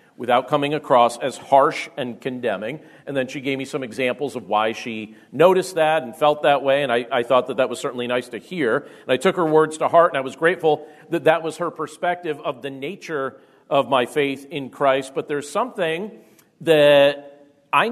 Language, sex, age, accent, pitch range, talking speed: English, male, 40-59, American, 135-175 Hz, 210 wpm